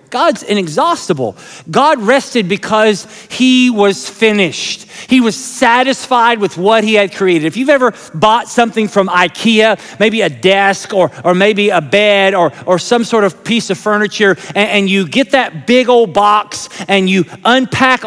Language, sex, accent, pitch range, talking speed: English, male, American, 180-235 Hz, 165 wpm